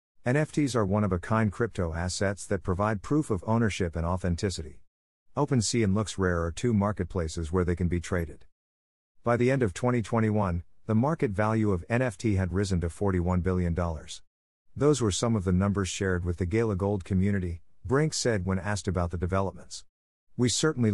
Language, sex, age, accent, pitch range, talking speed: English, male, 50-69, American, 90-115 Hz, 170 wpm